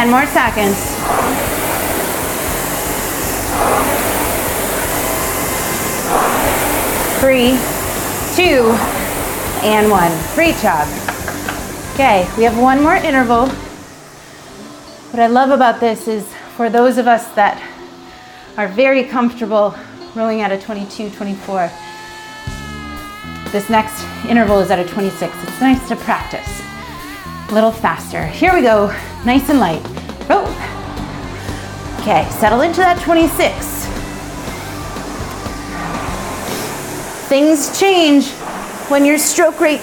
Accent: American